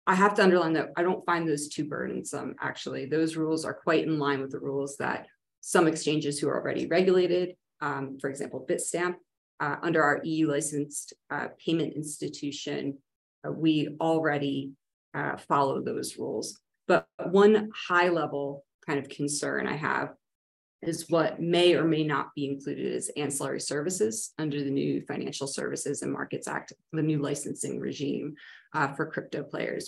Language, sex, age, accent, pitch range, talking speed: English, female, 30-49, American, 145-180 Hz, 165 wpm